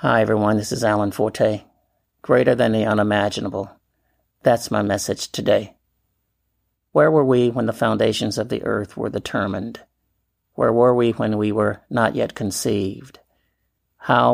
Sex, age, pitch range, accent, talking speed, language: male, 50-69, 105-115 Hz, American, 145 wpm, English